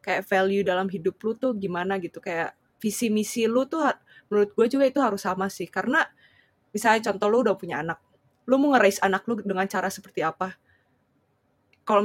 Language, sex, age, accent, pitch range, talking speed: Indonesian, female, 20-39, native, 185-215 Hz, 185 wpm